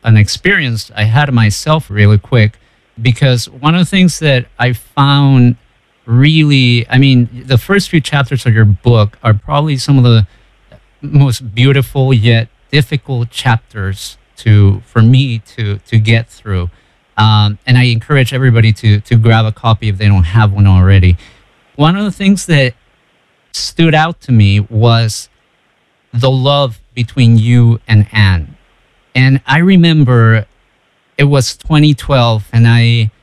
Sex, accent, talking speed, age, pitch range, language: male, American, 150 wpm, 50-69, 110-135 Hz, English